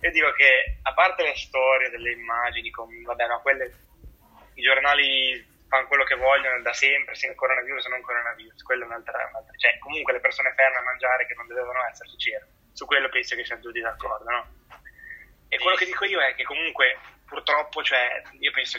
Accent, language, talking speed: native, Italian, 210 wpm